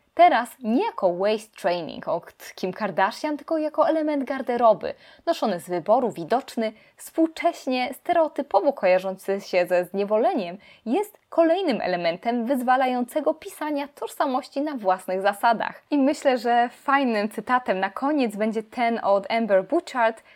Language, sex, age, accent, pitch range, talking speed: Polish, female, 20-39, native, 205-290 Hz, 125 wpm